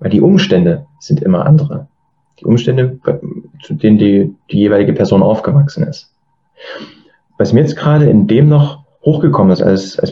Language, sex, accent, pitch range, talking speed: German, male, German, 115-165 Hz, 160 wpm